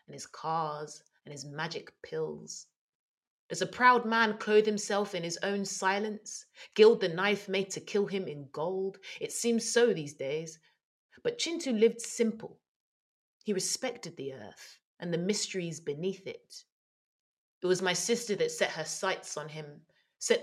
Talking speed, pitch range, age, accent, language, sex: 160 wpm, 155-205 Hz, 30-49, British, English, female